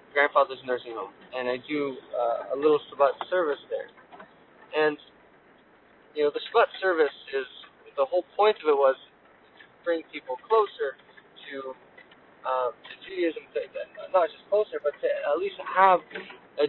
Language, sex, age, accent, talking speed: English, male, 20-39, American, 155 wpm